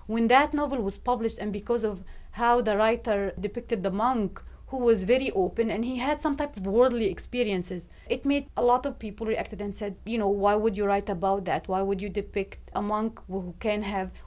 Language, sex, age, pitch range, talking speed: English, female, 30-49, 200-255 Hz, 220 wpm